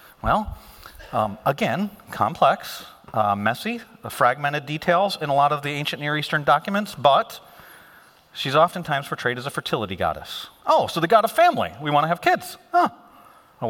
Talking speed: 170 wpm